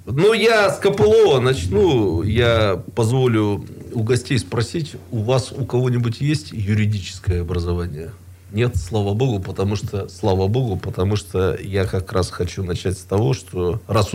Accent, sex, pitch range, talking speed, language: native, male, 95-125 Hz, 150 wpm, Russian